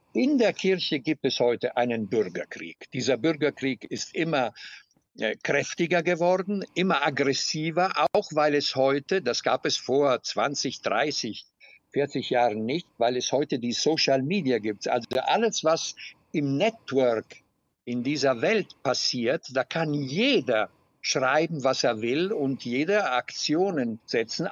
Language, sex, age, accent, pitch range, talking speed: German, male, 60-79, German, 130-180 Hz, 140 wpm